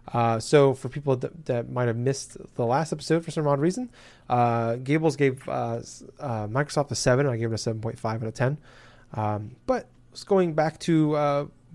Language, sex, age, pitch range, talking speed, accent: English, male, 20-39, 120-140 Hz, 195 wpm, American